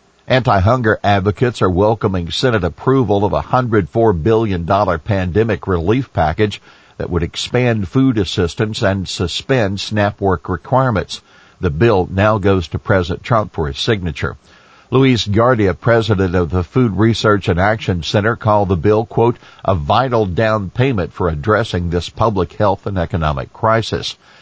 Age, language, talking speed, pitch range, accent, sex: 50-69, English, 145 wpm, 95-120 Hz, American, male